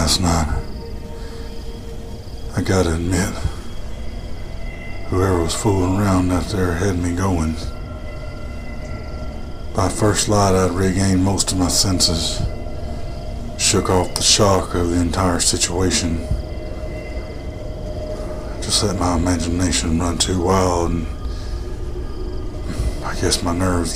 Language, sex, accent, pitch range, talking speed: English, male, American, 85-100 Hz, 110 wpm